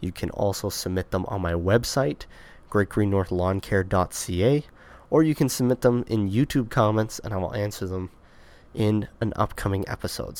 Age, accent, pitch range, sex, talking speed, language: 20-39, American, 90-110 Hz, male, 150 wpm, English